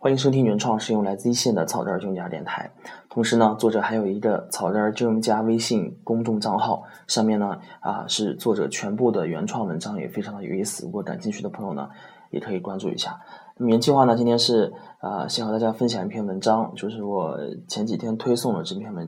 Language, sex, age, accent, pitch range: Chinese, male, 20-39, native, 105-115 Hz